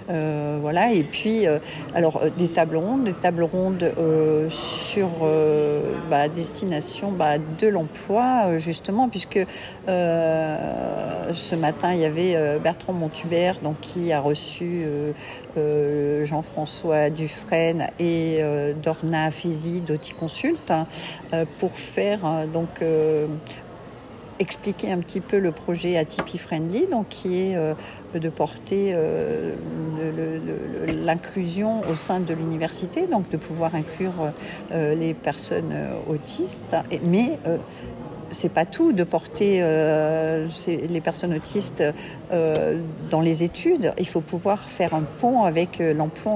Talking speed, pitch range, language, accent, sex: 140 wpm, 155-180 Hz, French, French, female